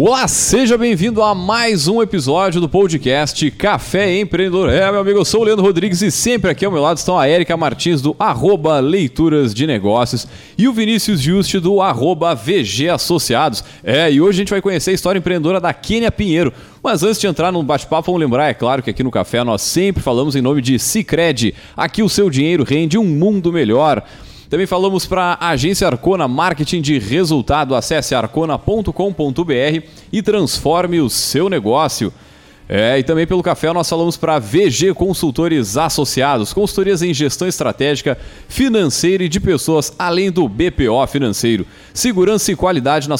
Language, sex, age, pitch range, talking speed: Portuguese, male, 30-49, 145-195 Hz, 175 wpm